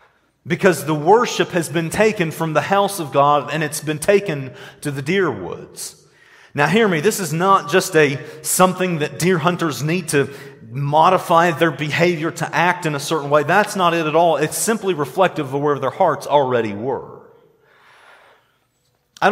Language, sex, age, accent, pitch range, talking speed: English, male, 40-59, American, 155-195 Hz, 175 wpm